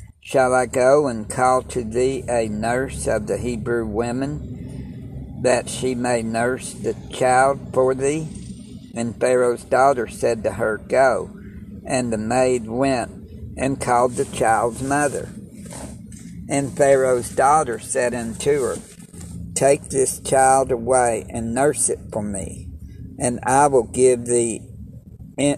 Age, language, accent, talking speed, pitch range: 60-79, English, American, 135 wpm, 110-130 Hz